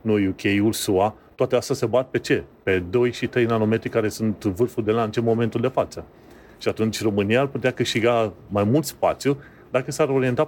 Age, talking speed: 30-49, 200 wpm